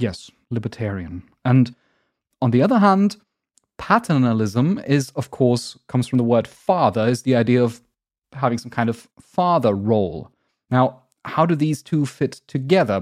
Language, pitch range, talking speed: English, 120-165 Hz, 150 wpm